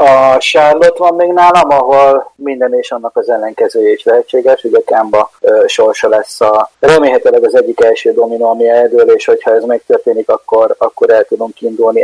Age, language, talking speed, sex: 30-49, Hungarian, 175 wpm, male